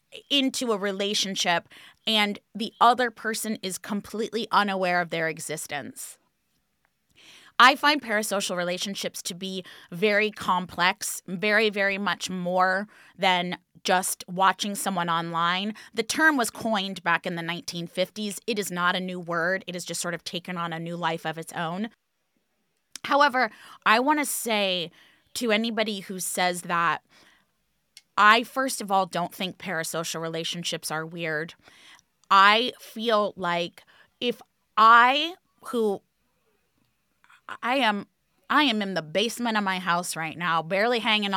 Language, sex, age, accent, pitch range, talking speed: English, female, 20-39, American, 175-220 Hz, 140 wpm